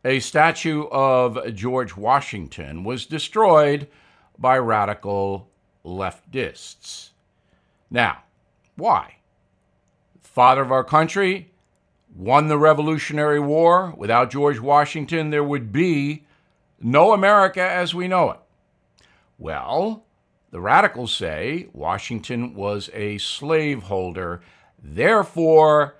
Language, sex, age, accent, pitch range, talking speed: English, male, 60-79, American, 110-155 Hz, 95 wpm